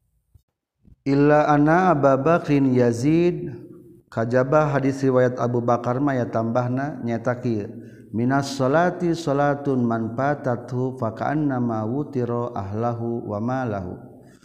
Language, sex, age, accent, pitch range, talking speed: Indonesian, male, 50-69, native, 115-140 Hz, 95 wpm